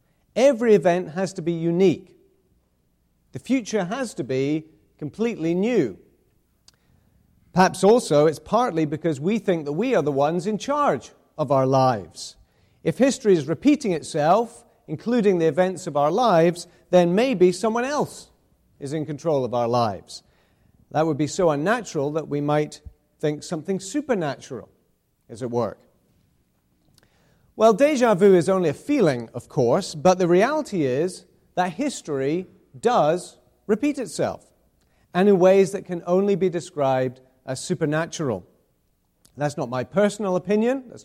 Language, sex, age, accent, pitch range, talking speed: English, male, 40-59, British, 140-200 Hz, 145 wpm